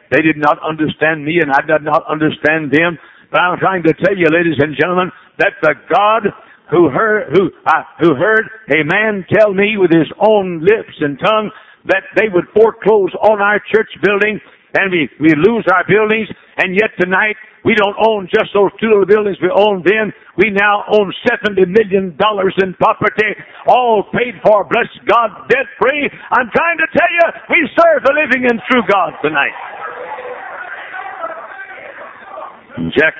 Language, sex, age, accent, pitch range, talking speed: English, male, 60-79, American, 155-215 Hz, 170 wpm